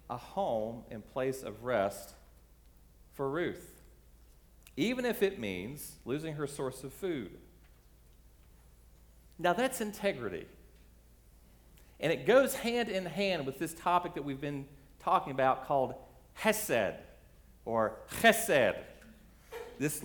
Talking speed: 115 wpm